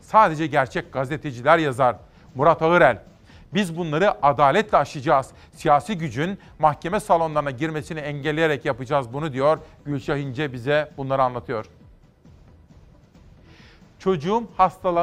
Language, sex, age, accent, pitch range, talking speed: Turkish, male, 40-59, native, 145-175 Hz, 100 wpm